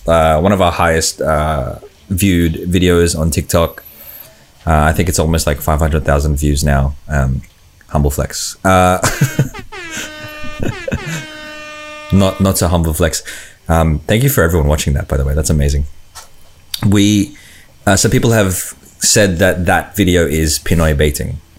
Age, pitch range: 30-49, 75-95 Hz